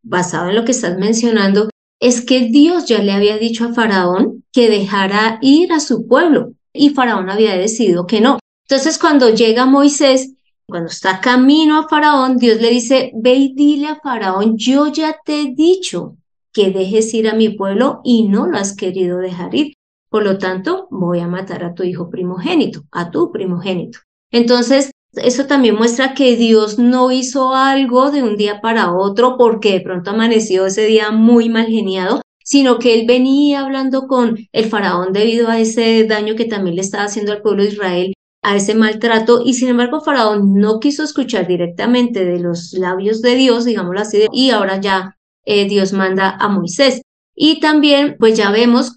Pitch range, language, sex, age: 200-260 Hz, Spanish, female, 30-49